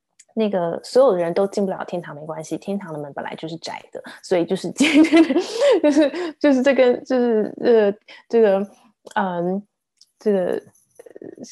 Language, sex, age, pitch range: Chinese, female, 20-39, 165-215 Hz